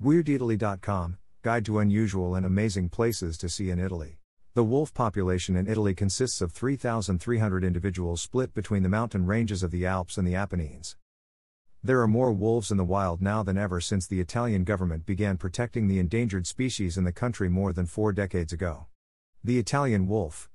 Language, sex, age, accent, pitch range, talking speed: English, male, 50-69, American, 90-115 Hz, 180 wpm